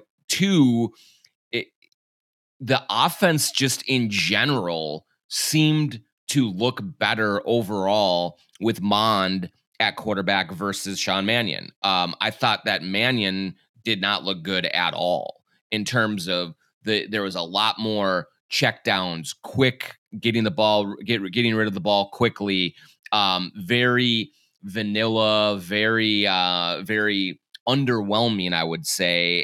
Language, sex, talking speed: English, male, 125 wpm